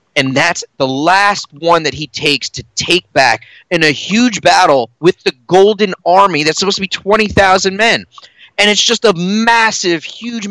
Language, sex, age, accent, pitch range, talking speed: English, male, 30-49, American, 155-220 Hz, 175 wpm